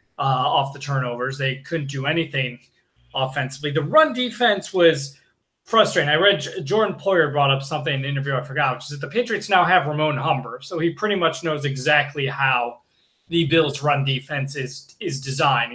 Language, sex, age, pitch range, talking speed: English, male, 20-39, 140-165 Hz, 185 wpm